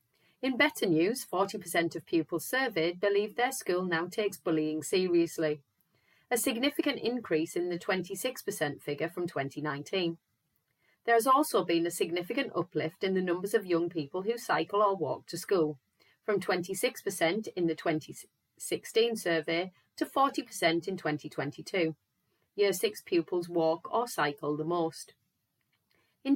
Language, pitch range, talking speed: English, 160-220 Hz, 140 wpm